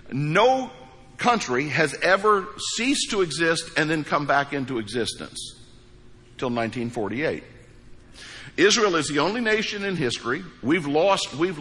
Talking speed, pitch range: 130 wpm, 125-195 Hz